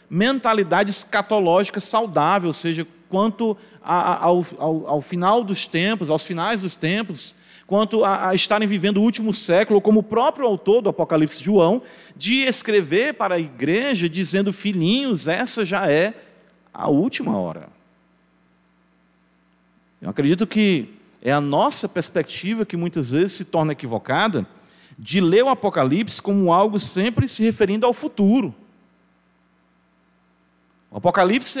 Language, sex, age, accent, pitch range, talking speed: Portuguese, male, 40-59, Brazilian, 130-210 Hz, 135 wpm